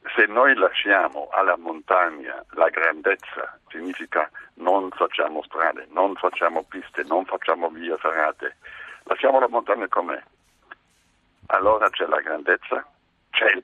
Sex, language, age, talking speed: male, Italian, 60-79, 125 wpm